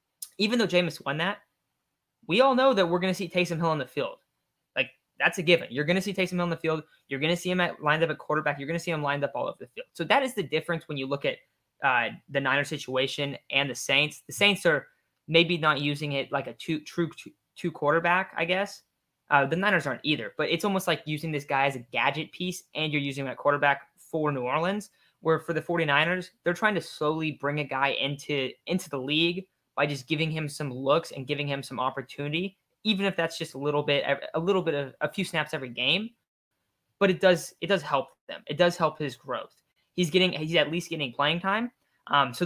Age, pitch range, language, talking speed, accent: 20-39, 145-180 Hz, English, 240 wpm, American